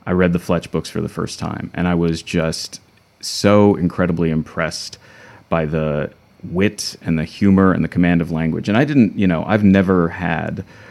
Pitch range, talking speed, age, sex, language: 80-100 Hz, 195 wpm, 30-49, male, English